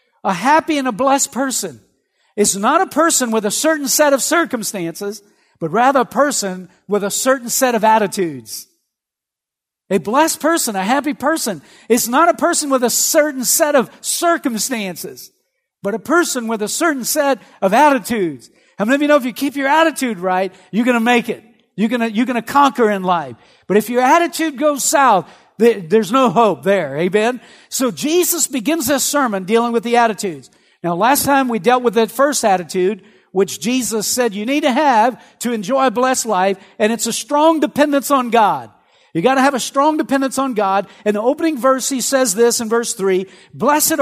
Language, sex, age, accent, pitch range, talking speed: English, male, 50-69, American, 215-275 Hz, 195 wpm